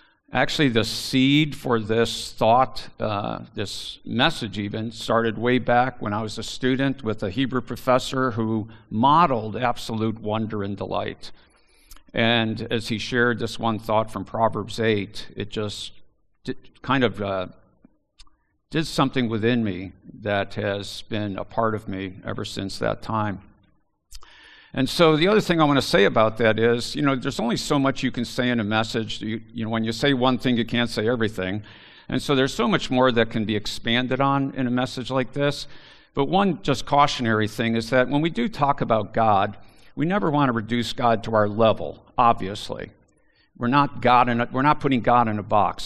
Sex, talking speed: male, 185 wpm